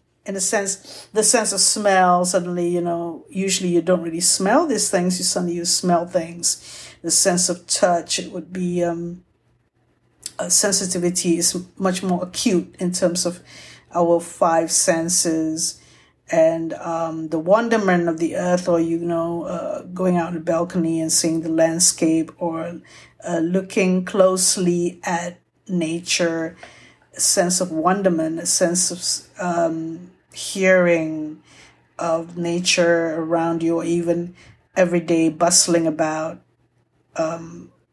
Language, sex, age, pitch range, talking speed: English, female, 50-69, 165-185 Hz, 135 wpm